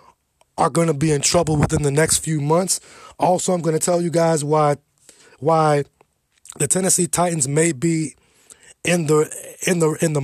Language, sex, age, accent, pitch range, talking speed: English, male, 20-39, American, 140-170 Hz, 180 wpm